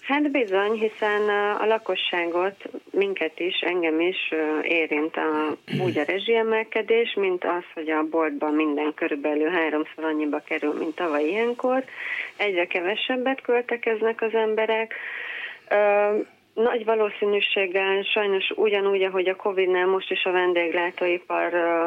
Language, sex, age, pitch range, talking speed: Hungarian, female, 30-49, 160-215 Hz, 120 wpm